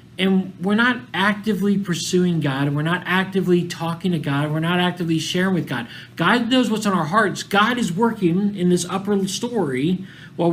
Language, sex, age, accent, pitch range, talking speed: English, male, 40-59, American, 155-205 Hz, 195 wpm